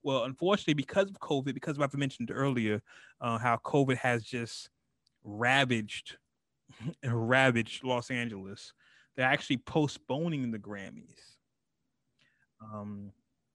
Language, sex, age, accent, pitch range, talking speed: English, male, 30-49, American, 110-130 Hz, 115 wpm